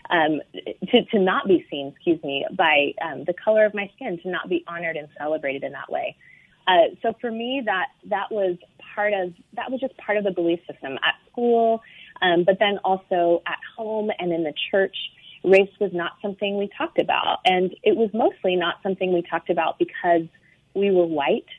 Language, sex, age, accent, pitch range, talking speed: English, female, 20-39, American, 170-210 Hz, 205 wpm